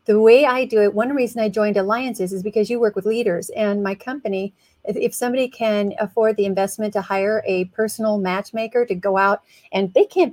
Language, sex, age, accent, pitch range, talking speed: English, female, 40-59, American, 205-245 Hz, 210 wpm